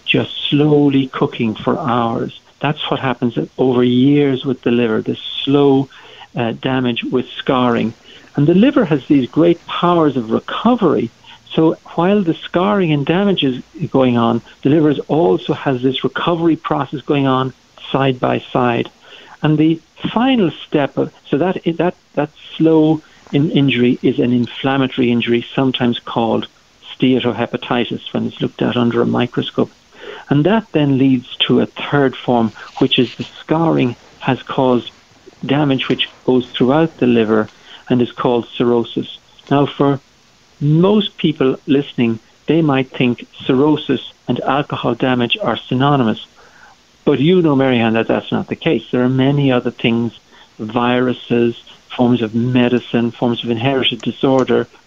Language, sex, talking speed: English, male, 150 wpm